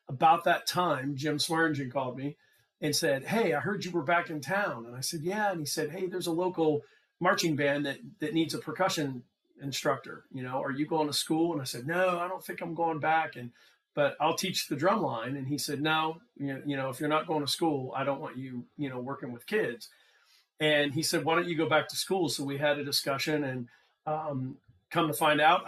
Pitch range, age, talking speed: 135-160 Hz, 40-59, 240 wpm